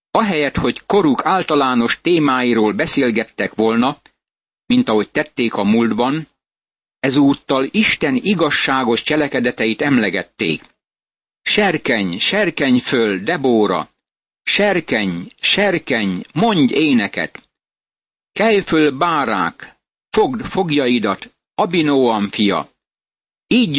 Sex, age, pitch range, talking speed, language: male, 60-79, 120-155 Hz, 85 wpm, Hungarian